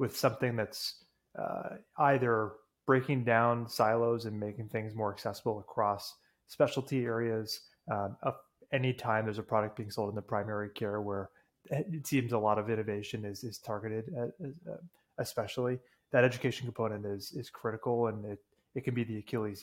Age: 30-49